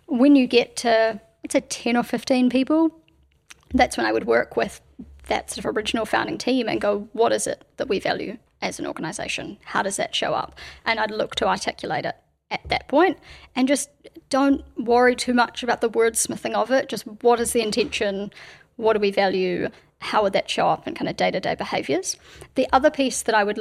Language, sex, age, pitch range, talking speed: English, female, 30-49, 215-265 Hz, 215 wpm